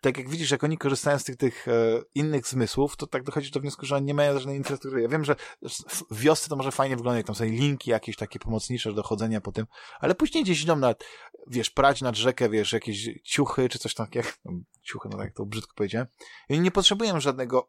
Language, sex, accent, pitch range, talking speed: Polish, male, native, 115-145 Hz, 230 wpm